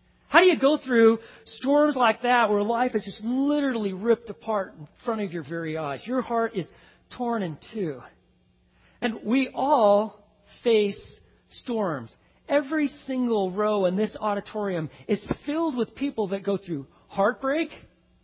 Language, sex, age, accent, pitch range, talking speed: English, male, 40-59, American, 170-245 Hz, 150 wpm